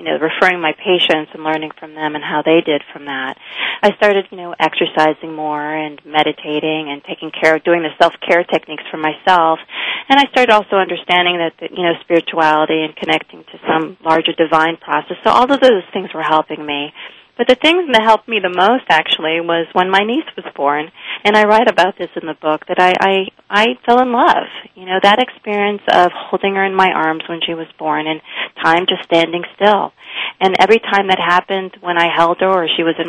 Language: English